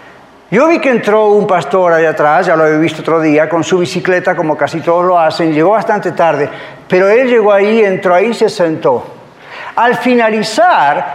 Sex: male